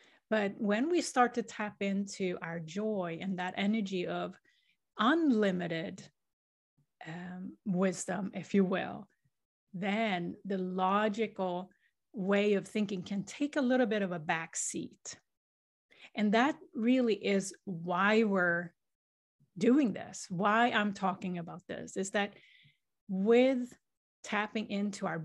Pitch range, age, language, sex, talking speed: 180-215 Hz, 30-49, English, female, 125 wpm